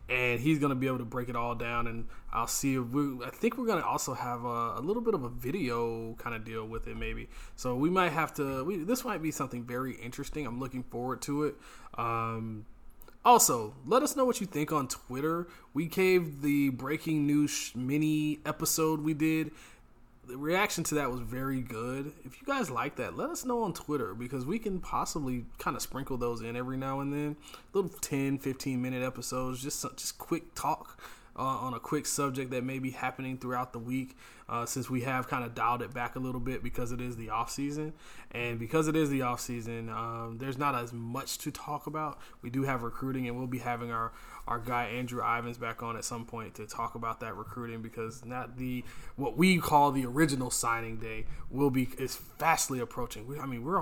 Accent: American